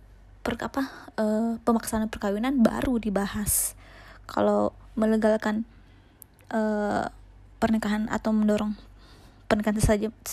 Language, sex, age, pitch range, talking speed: Indonesian, female, 20-39, 210-245 Hz, 75 wpm